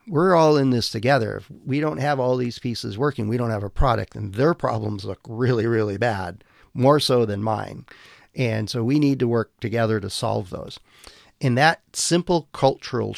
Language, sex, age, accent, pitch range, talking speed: English, male, 50-69, American, 110-135 Hz, 195 wpm